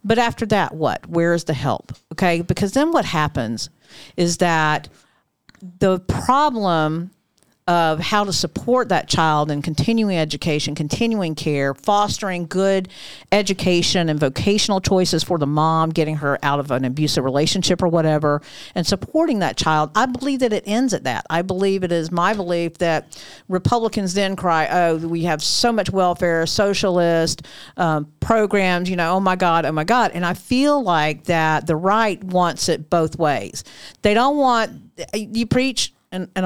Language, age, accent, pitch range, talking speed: English, 50-69, American, 155-195 Hz, 170 wpm